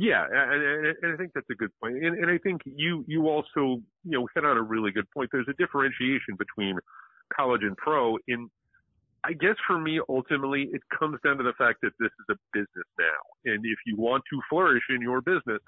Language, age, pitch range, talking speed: English, 50-69, 115-165 Hz, 220 wpm